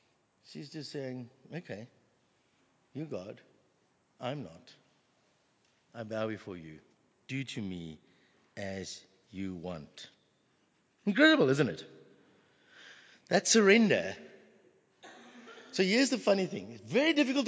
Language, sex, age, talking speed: English, male, 60-79, 105 wpm